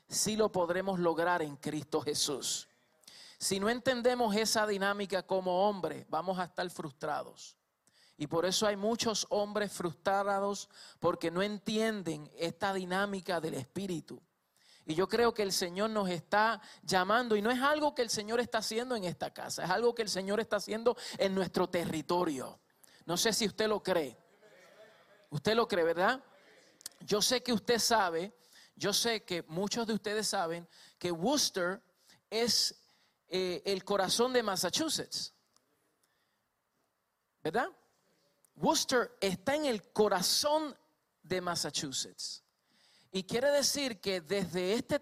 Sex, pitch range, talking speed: male, 175-220 Hz, 145 wpm